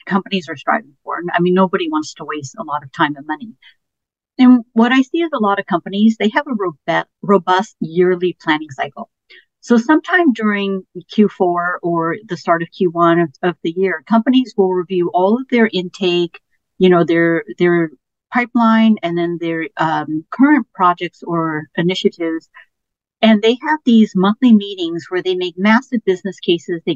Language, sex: English, female